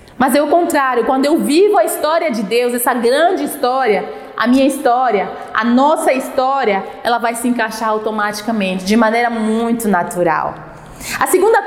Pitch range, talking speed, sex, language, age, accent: 235-310 Hz, 160 wpm, female, Portuguese, 20-39, Brazilian